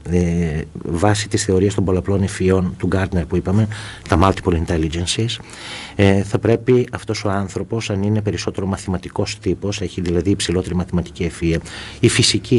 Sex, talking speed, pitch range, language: male, 145 wpm, 90-110 Hz, Greek